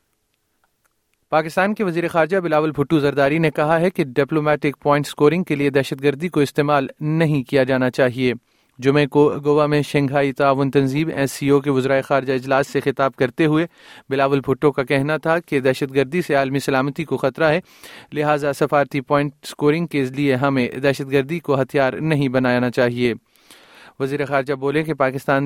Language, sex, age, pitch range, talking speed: Urdu, male, 30-49, 130-150 Hz, 175 wpm